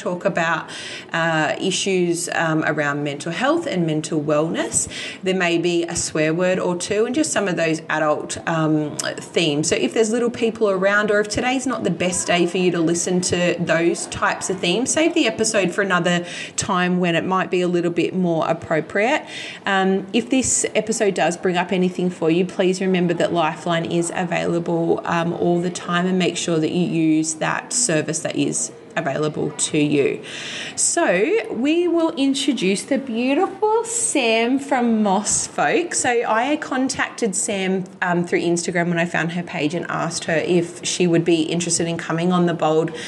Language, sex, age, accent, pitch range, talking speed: English, female, 30-49, Australian, 165-210 Hz, 185 wpm